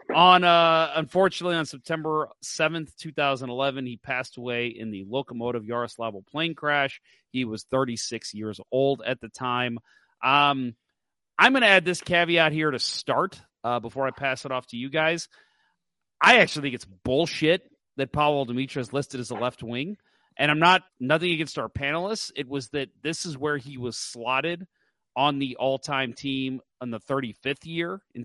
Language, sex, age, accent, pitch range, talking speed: English, male, 30-49, American, 125-160 Hz, 175 wpm